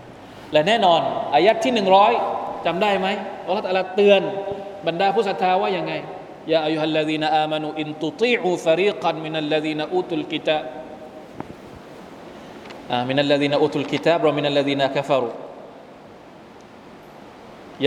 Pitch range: 155-215 Hz